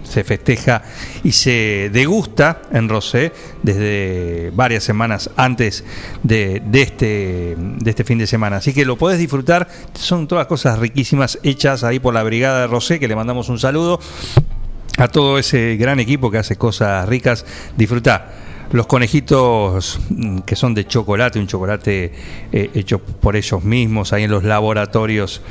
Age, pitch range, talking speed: 40-59, 100-130 Hz, 155 wpm